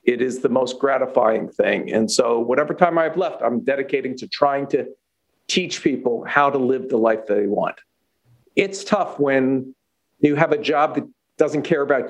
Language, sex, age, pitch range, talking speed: English, male, 50-69, 130-165 Hz, 190 wpm